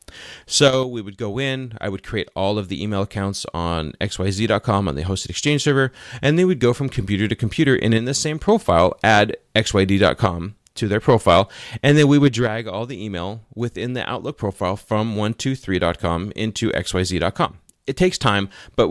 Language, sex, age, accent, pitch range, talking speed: English, male, 30-49, American, 95-120 Hz, 185 wpm